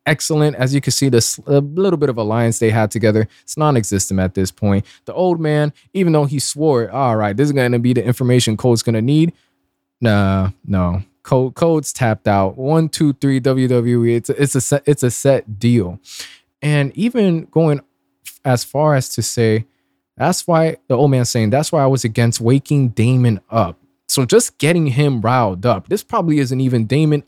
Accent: American